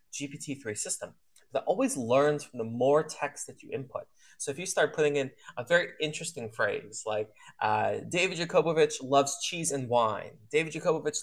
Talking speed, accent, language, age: 170 wpm, American, English, 20-39